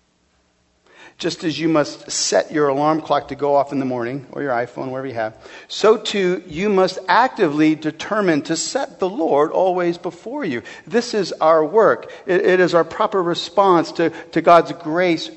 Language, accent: English, American